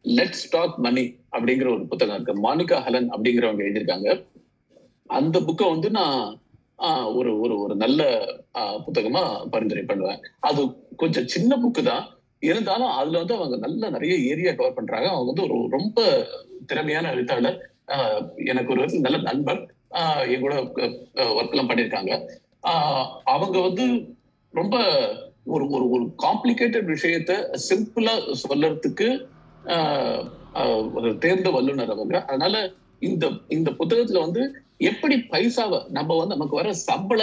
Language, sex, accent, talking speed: Tamil, male, native, 85 wpm